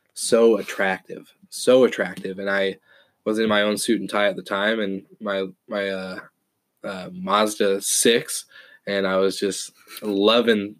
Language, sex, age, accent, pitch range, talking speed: English, male, 20-39, American, 100-115 Hz, 155 wpm